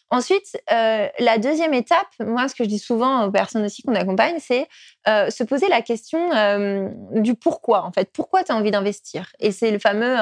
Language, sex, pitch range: French, female, 205-265 Hz